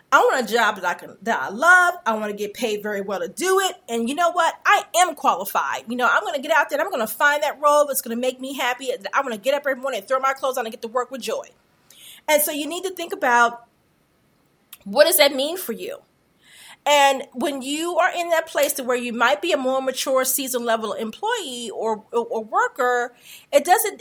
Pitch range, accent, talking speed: 235-295 Hz, American, 255 wpm